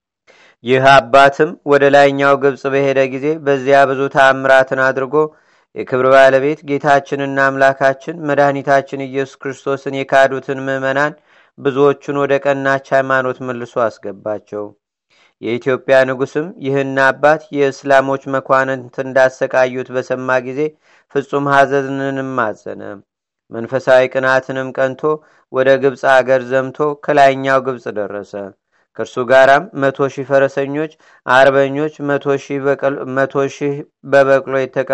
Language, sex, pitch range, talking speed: Amharic, male, 130-140 Hz, 95 wpm